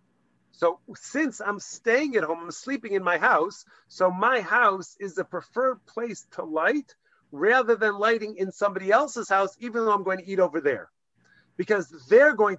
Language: English